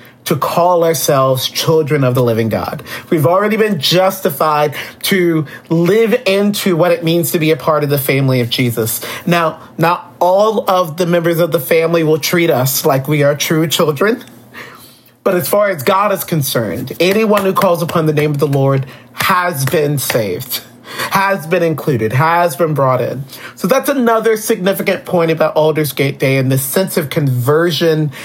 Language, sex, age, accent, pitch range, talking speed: English, male, 40-59, American, 145-185 Hz, 175 wpm